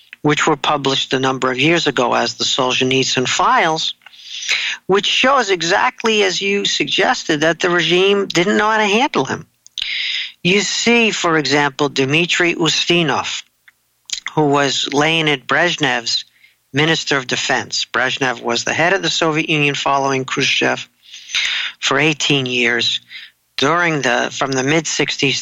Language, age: English, 50-69